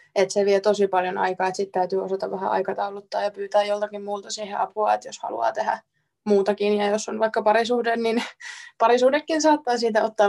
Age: 20-39